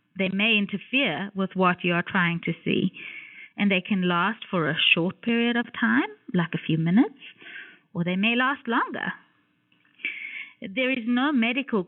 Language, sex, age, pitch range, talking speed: English, female, 30-49, 185-260 Hz, 165 wpm